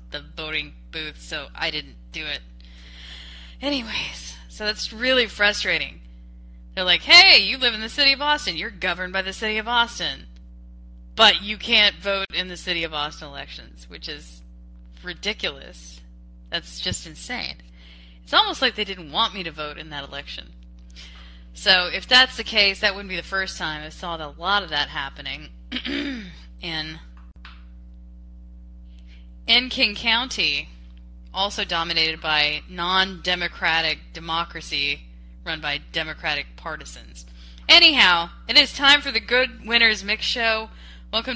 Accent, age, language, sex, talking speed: American, 20-39, English, female, 150 wpm